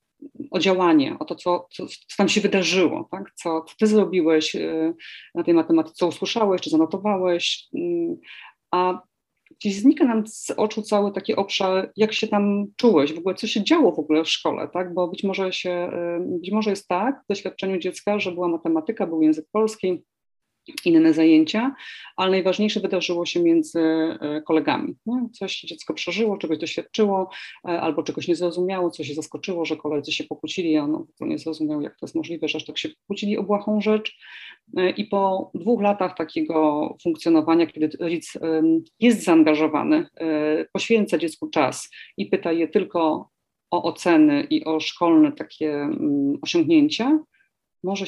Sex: female